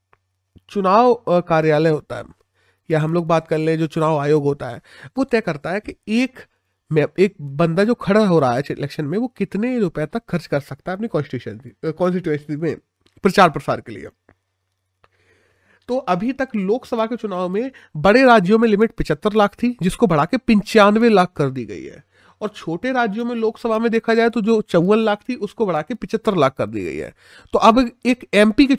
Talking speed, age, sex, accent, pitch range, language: 200 wpm, 30-49, male, native, 160-225 Hz, Hindi